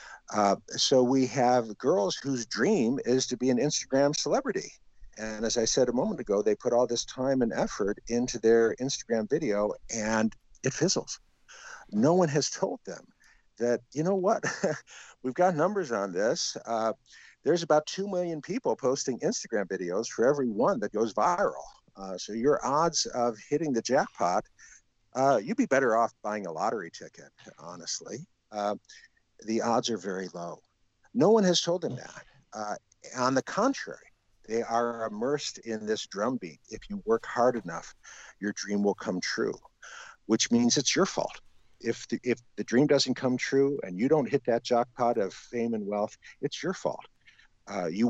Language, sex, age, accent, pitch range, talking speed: English, male, 50-69, American, 110-140 Hz, 175 wpm